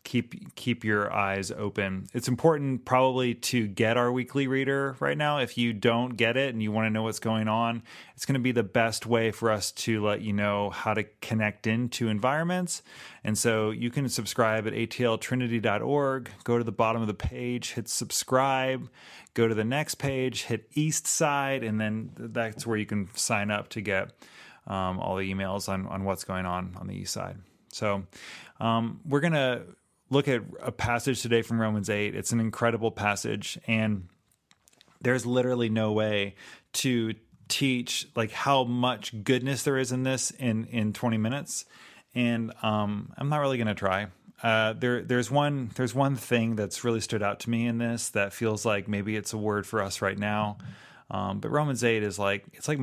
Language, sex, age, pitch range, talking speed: English, male, 30-49, 105-125 Hz, 195 wpm